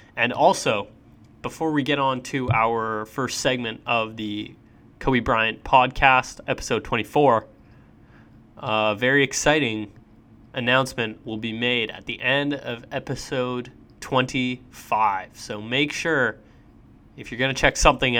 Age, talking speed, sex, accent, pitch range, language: 20-39, 130 wpm, male, American, 115-135 Hz, English